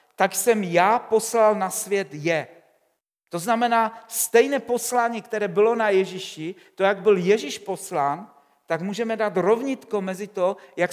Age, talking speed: 50-69, 150 wpm